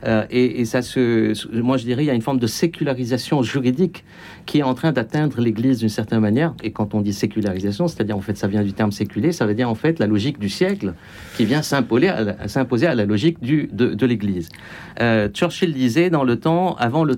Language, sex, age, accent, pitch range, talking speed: French, male, 50-69, French, 105-155 Hz, 235 wpm